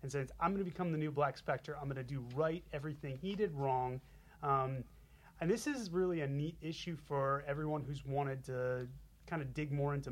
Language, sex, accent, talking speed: English, male, American, 220 wpm